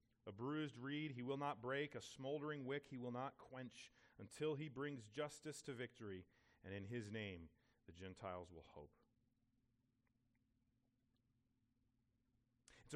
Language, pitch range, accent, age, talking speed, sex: English, 120-150 Hz, American, 40-59, 135 wpm, male